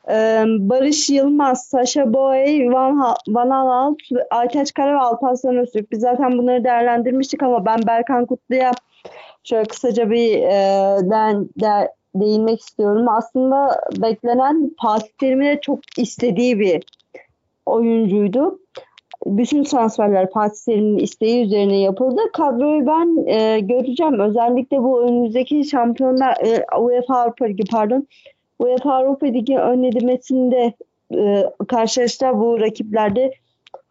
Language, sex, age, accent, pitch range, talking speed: Turkish, female, 40-59, native, 225-265 Hz, 110 wpm